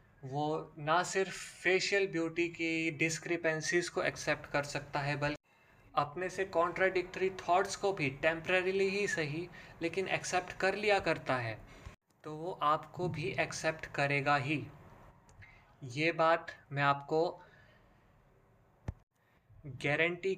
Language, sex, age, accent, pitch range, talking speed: Hindi, male, 20-39, native, 130-165 Hz, 120 wpm